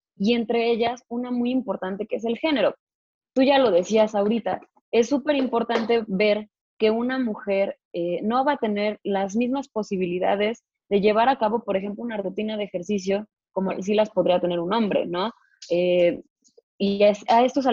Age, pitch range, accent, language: 20-39, 190-235 Hz, Mexican, Spanish